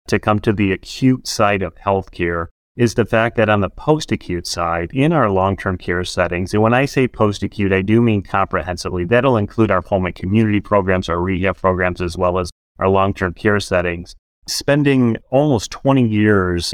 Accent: American